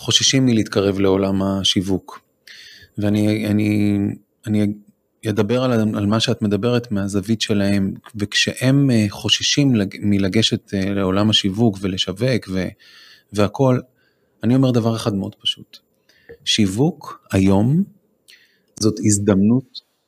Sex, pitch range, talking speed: male, 100-130 Hz, 95 wpm